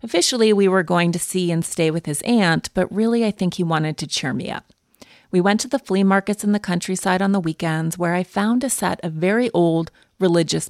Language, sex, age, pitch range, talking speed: English, female, 30-49, 165-200 Hz, 235 wpm